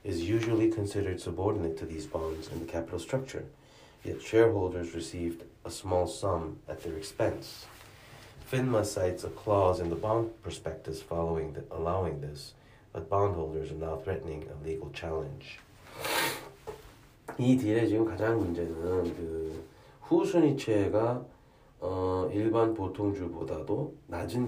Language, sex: Korean, male